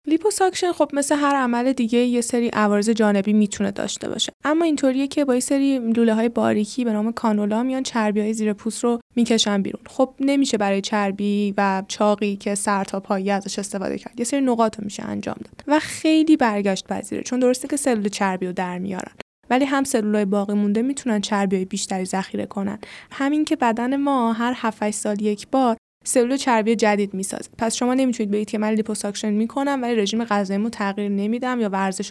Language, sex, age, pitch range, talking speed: Persian, female, 10-29, 205-255 Hz, 190 wpm